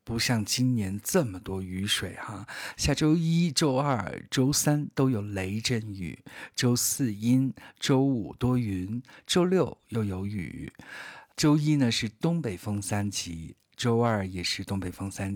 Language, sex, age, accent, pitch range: Chinese, male, 50-69, native, 100-135 Hz